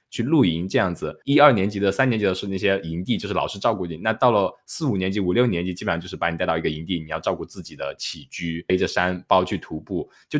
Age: 20-39